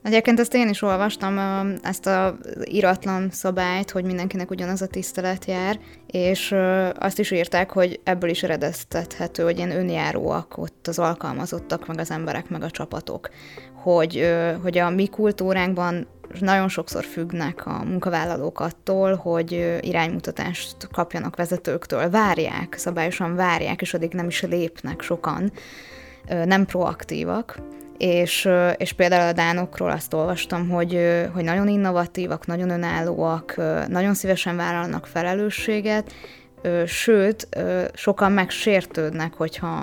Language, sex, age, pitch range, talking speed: Hungarian, female, 20-39, 170-190 Hz, 125 wpm